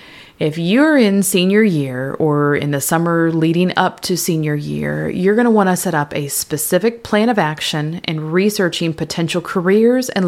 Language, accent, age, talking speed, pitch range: English, American, 30-49, 180 wpm, 150-185 Hz